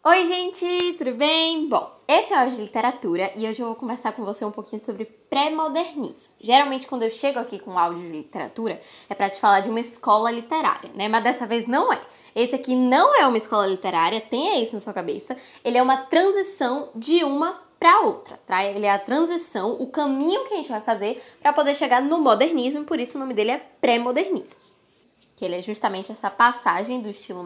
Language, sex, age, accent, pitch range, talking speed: Portuguese, female, 10-29, Brazilian, 220-290 Hz, 215 wpm